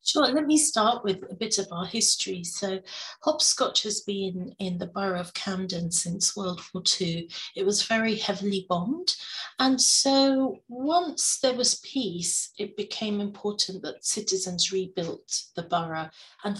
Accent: British